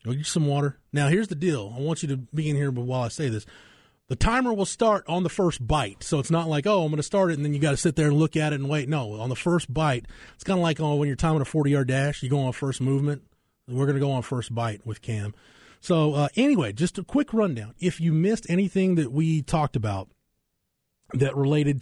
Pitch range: 120-155 Hz